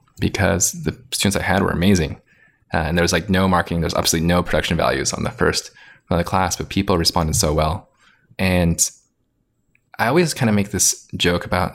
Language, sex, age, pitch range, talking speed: English, male, 20-39, 85-100 Hz, 205 wpm